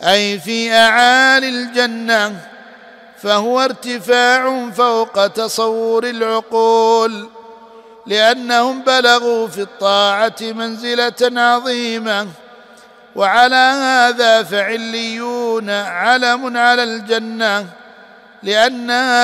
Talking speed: 70 wpm